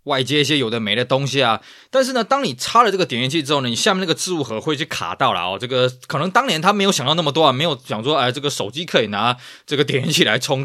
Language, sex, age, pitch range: Chinese, male, 20-39, 125-185 Hz